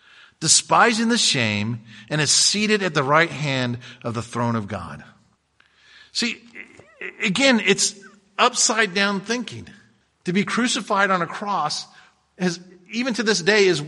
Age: 50-69